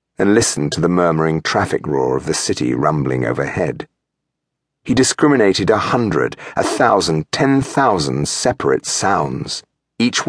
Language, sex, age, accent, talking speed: English, male, 50-69, British, 135 wpm